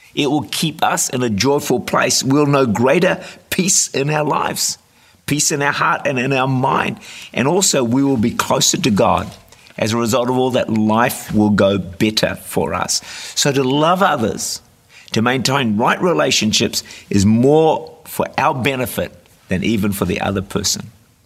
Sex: male